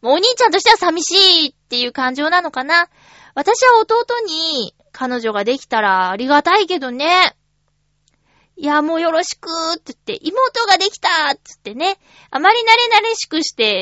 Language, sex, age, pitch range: Japanese, female, 20-39, 240-370 Hz